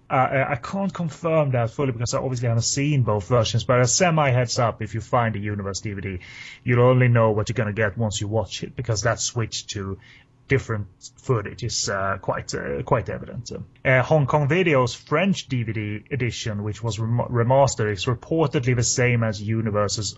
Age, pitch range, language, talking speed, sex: 30-49, 110-135 Hz, English, 185 wpm, male